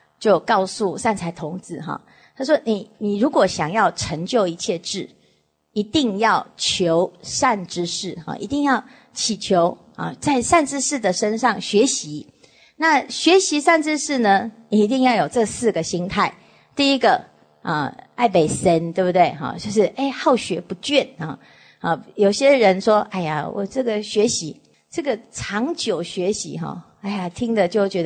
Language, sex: English, female